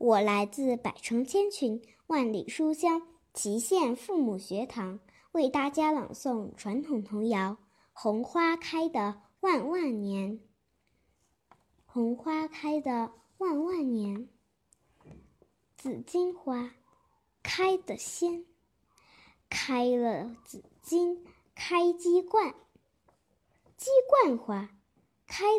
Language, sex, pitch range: Chinese, male, 230-350 Hz